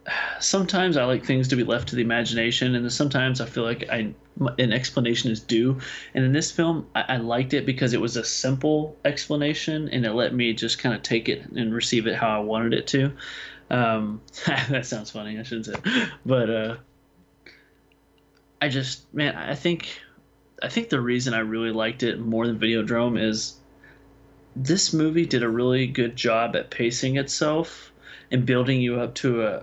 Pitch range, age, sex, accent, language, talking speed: 115-140 Hz, 30-49, male, American, English, 190 wpm